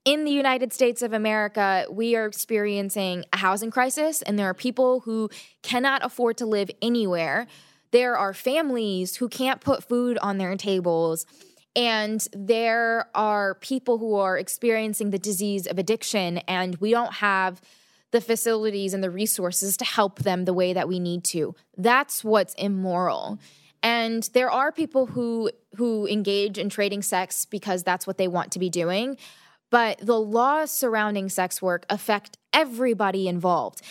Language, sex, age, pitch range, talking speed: English, female, 10-29, 190-235 Hz, 160 wpm